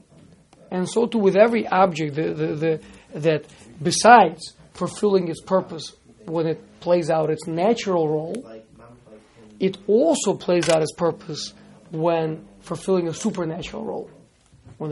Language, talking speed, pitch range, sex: English, 135 wpm, 155-190 Hz, male